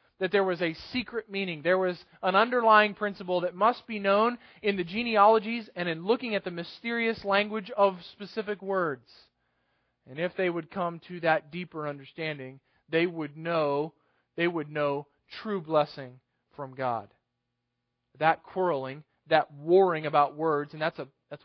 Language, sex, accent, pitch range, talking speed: English, male, American, 145-185 Hz, 160 wpm